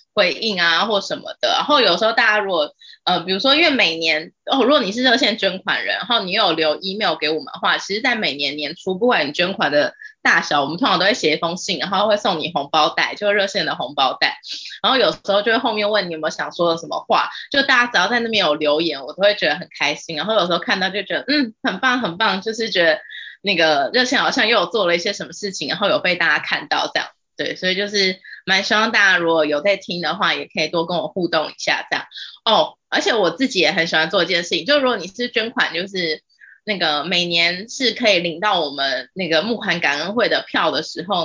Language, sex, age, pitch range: Chinese, female, 20-39, 165-225 Hz